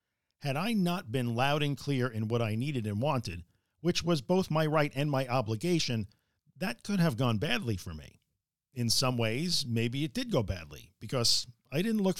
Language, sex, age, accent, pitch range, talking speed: English, male, 50-69, American, 110-150 Hz, 195 wpm